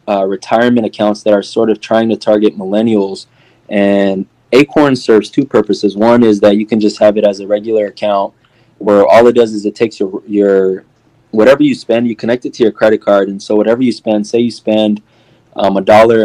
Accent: American